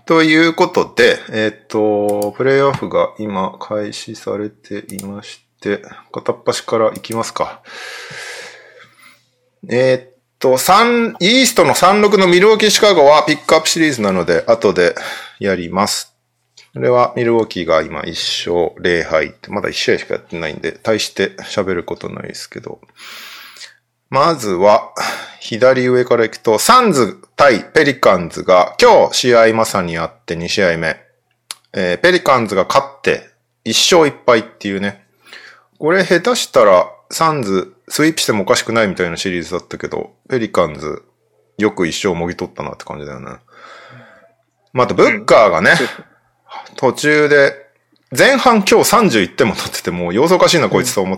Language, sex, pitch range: Japanese, male, 100-155 Hz